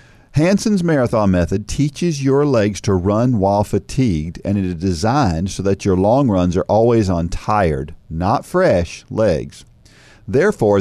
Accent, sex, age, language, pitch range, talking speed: American, male, 50-69, English, 95-145 Hz, 150 wpm